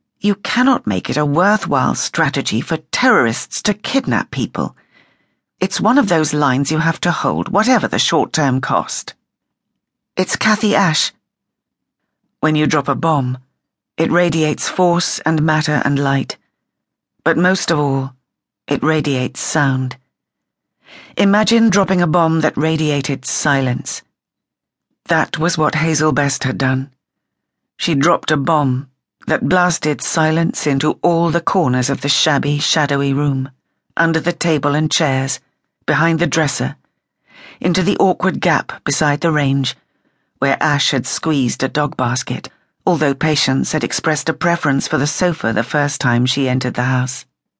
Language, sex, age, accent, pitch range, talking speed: English, female, 40-59, British, 140-170 Hz, 145 wpm